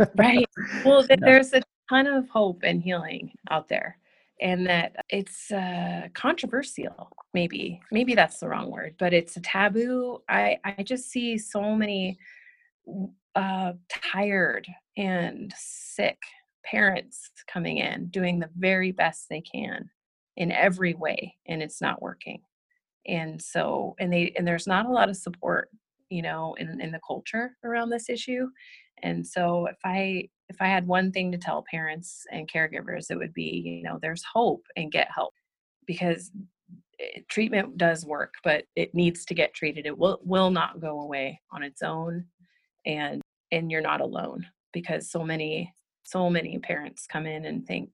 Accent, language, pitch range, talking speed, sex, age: American, English, 165-225 Hz, 165 wpm, female, 30-49